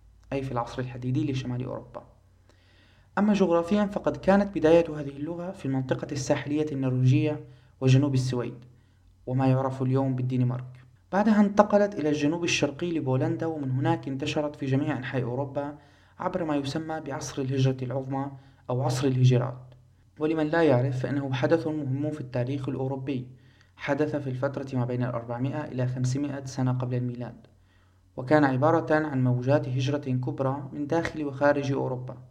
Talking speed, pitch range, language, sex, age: 140 wpm, 125-145 Hz, English, male, 30-49